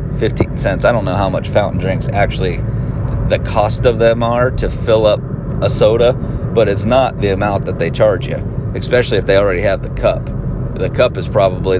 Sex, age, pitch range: male, 30-49, 115-135 Hz